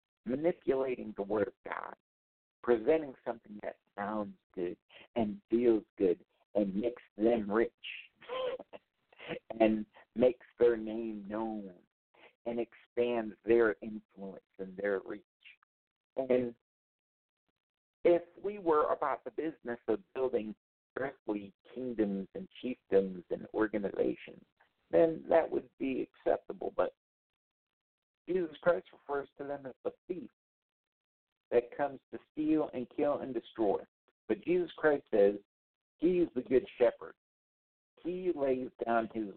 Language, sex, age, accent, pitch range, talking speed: English, male, 50-69, American, 105-160 Hz, 120 wpm